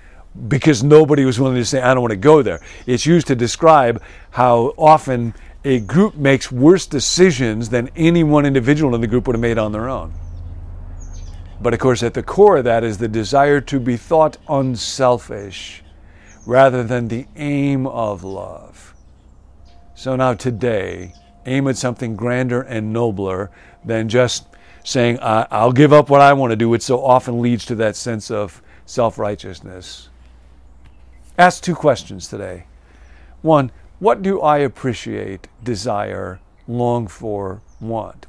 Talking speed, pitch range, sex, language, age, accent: 155 wpm, 90-130 Hz, male, English, 50-69, American